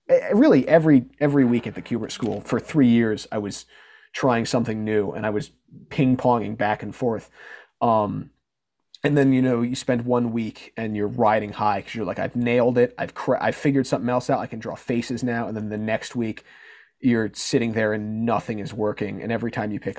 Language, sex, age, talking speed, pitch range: English, male, 30-49, 215 wpm, 110-135 Hz